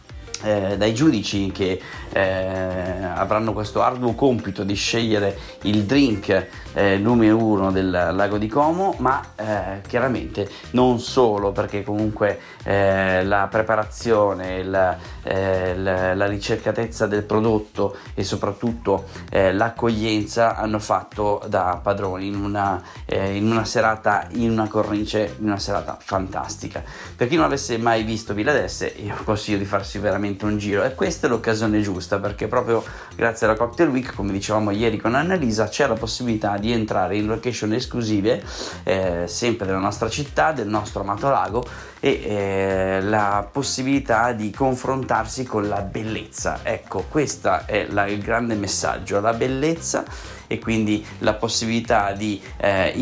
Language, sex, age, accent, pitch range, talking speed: Italian, male, 30-49, native, 95-110 Hz, 145 wpm